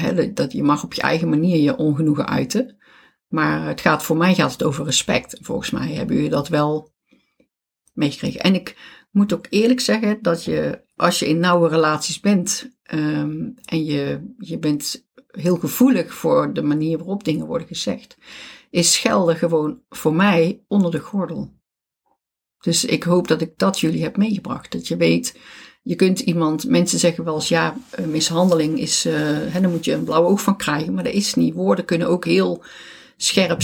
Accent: Dutch